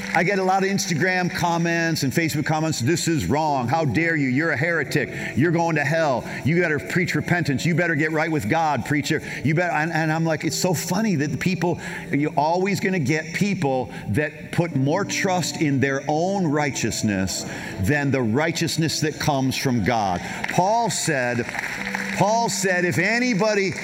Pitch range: 120-175 Hz